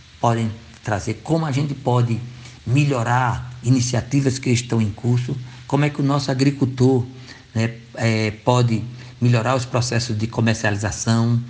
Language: Portuguese